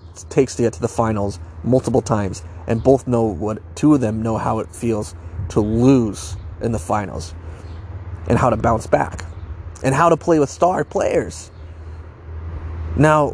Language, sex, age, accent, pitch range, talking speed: English, male, 30-49, American, 85-120 Hz, 165 wpm